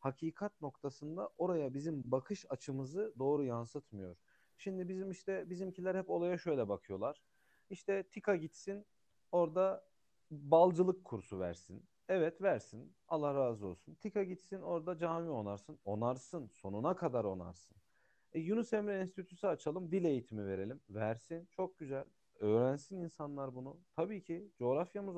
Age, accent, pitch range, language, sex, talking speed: 40-59, native, 130-190 Hz, Turkish, male, 130 wpm